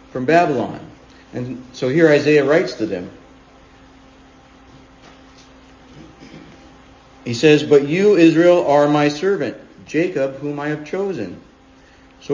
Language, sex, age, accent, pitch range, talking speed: English, male, 50-69, American, 125-165 Hz, 105 wpm